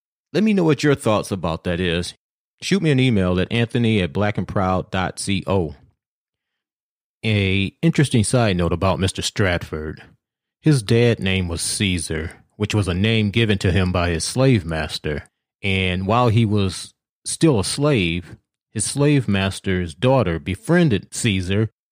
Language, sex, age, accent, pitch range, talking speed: English, male, 30-49, American, 95-125 Hz, 145 wpm